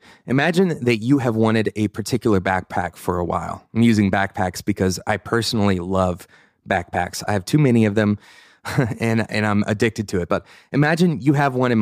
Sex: male